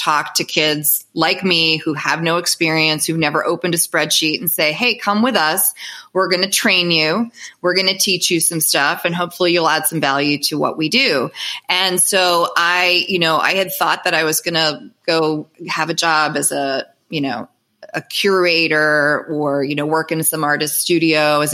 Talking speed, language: 205 wpm, English